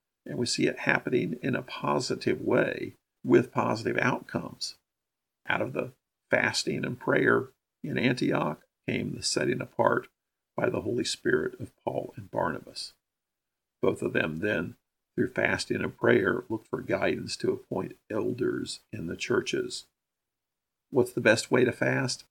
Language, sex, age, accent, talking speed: English, male, 50-69, American, 150 wpm